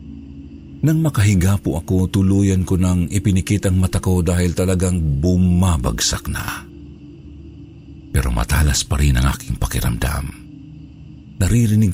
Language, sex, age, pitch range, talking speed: Filipino, male, 50-69, 70-95 Hz, 115 wpm